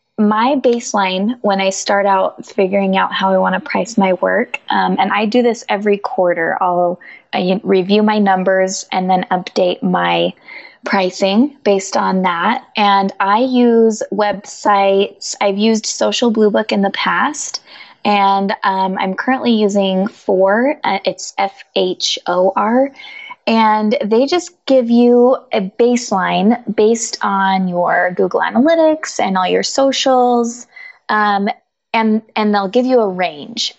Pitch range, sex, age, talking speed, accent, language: 195-245 Hz, female, 20-39, 145 wpm, American, English